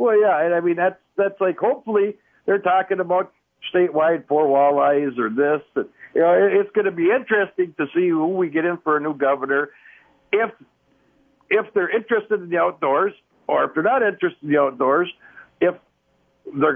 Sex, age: male, 60-79